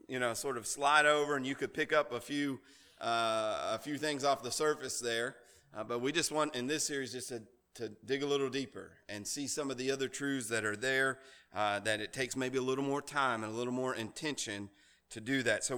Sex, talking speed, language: male, 245 wpm, English